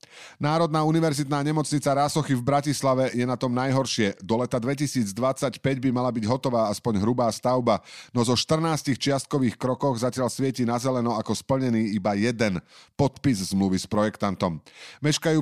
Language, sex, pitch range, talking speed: Slovak, male, 105-130 Hz, 150 wpm